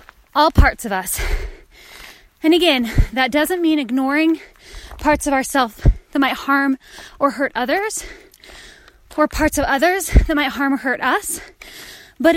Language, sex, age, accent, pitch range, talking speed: English, female, 20-39, American, 260-325 Hz, 145 wpm